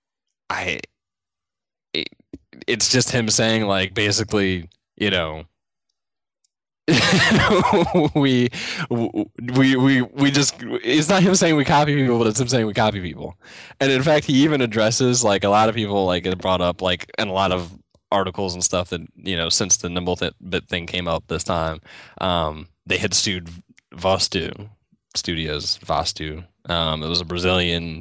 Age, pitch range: 10-29, 95-125 Hz